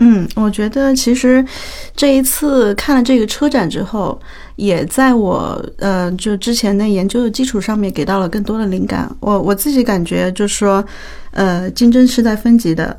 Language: Chinese